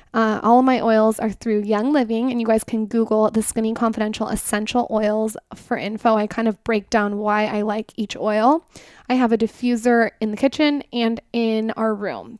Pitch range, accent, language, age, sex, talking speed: 215-245 Hz, American, English, 10-29, female, 205 wpm